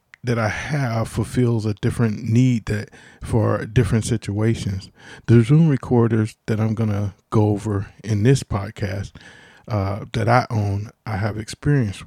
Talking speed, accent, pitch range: 145 wpm, American, 105-120 Hz